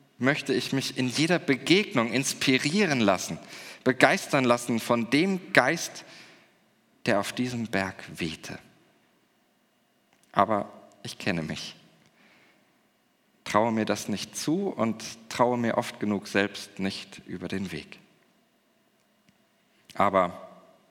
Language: German